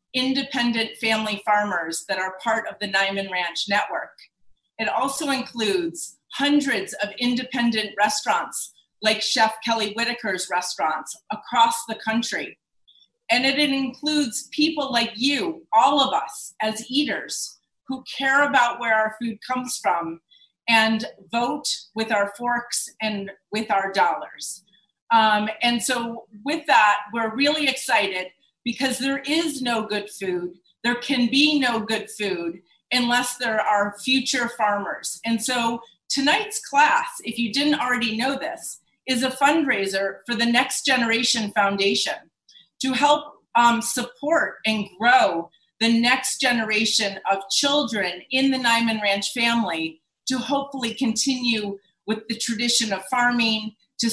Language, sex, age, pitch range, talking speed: English, female, 30-49, 210-260 Hz, 135 wpm